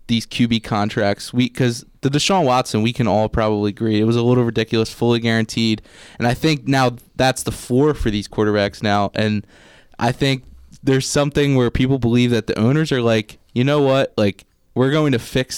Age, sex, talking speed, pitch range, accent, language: 20-39, male, 195 wpm, 110-130 Hz, American, English